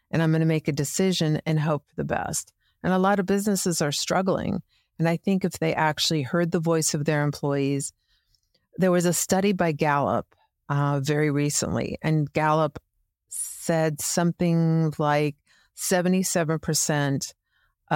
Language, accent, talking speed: English, American, 150 wpm